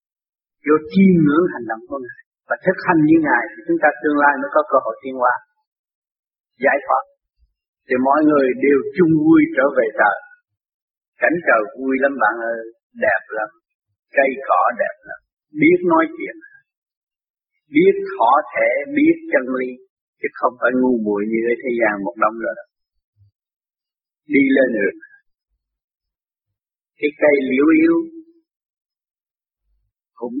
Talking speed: 145 wpm